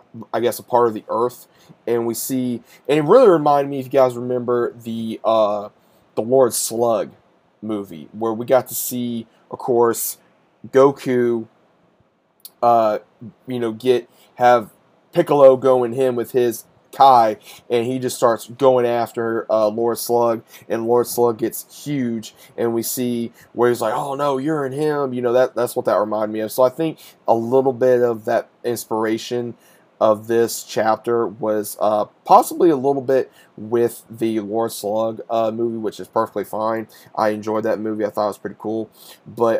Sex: male